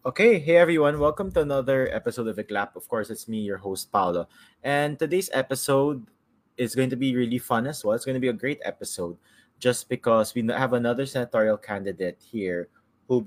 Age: 20-39